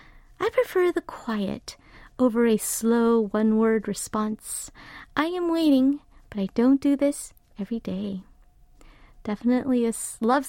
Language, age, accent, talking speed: English, 30-49, American, 125 wpm